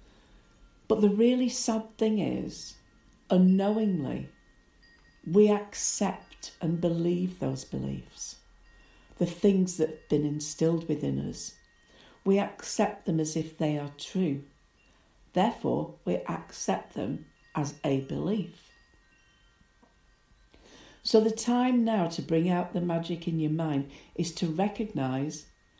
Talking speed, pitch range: 120 wpm, 135-200 Hz